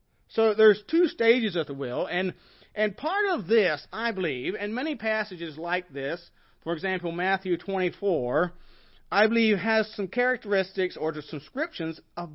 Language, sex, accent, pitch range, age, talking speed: English, male, American, 165-210 Hz, 40-59, 150 wpm